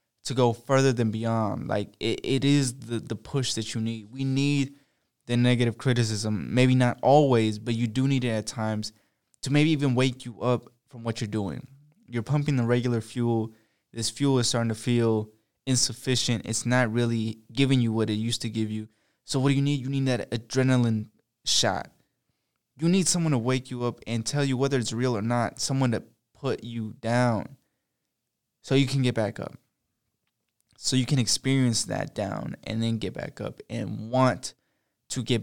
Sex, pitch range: male, 115-140 Hz